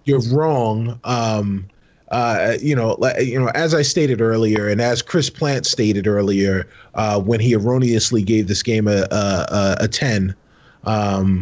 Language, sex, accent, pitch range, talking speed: English, male, American, 115-135 Hz, 165 wpm